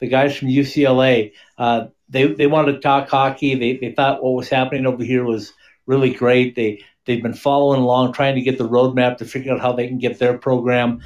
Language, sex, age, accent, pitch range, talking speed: English, male, 50-69, American, 120-140 Hz, 230 wpm